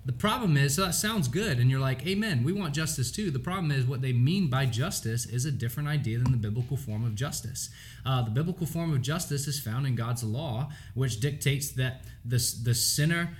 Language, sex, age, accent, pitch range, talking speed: English, male, 20-39, American, 120-155 Hz, 225 wpm